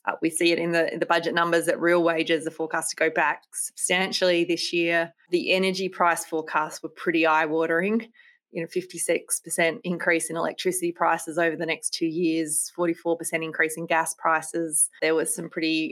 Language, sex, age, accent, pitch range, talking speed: English, female, 20-39, Australian, 165-190 Hz, 185 wpm